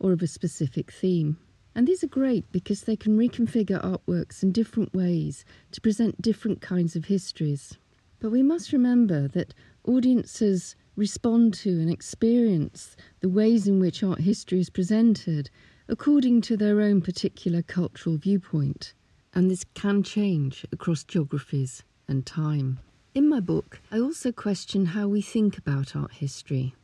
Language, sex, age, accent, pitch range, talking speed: English, female, 40-59, British, 150-205 Hz, 150 wpm